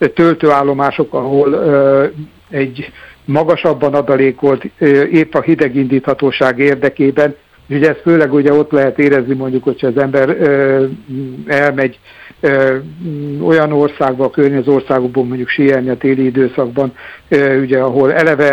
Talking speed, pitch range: 125 wpm, 135-150 Hz